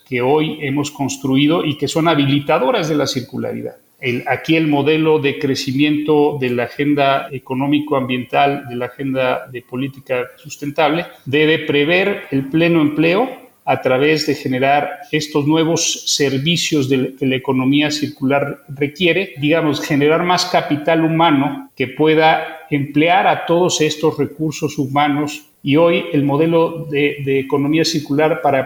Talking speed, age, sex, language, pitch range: 140 wpm, 40-59, male, Spanish, 135-160 Hz